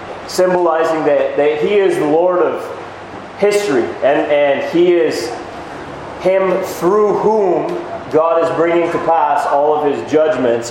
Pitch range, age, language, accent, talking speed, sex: 135-175 Hz, 30-49, English, American, 140 wpm, male